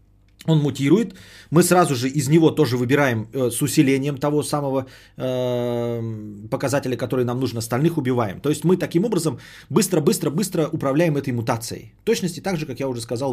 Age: 30-49